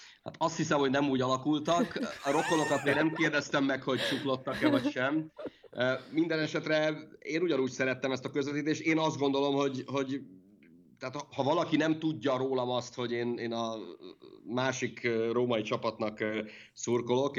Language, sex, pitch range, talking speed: Hungarian, male, 115-145 Hz, 150 wpm